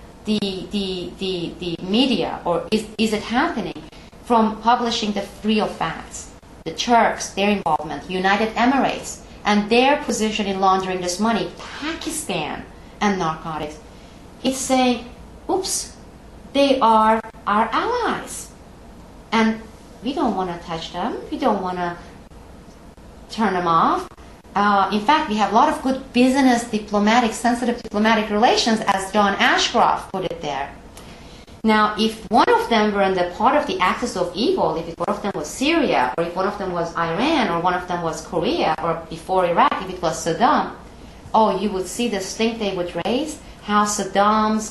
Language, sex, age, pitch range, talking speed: English, female, 30-49, 185-235 Hz, 160 wpm